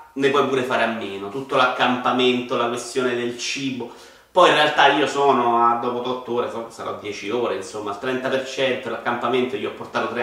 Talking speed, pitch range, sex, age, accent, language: 190 wpm, 115-155 Hz, male, 30-49, native, Italian